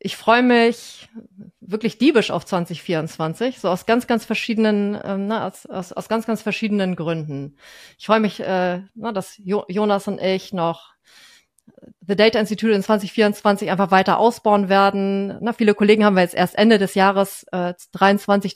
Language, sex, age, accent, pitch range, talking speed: German, female, 30-49, German, 185-225 Hz, 170 wpm